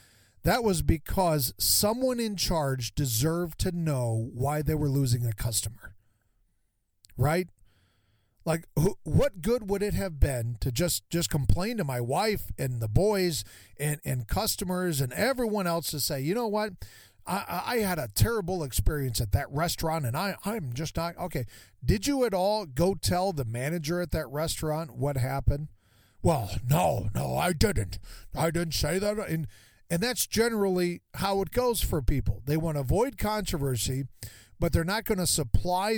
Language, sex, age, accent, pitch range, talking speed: English, male, 40-59, American, 115-185 Hz, 170 wpm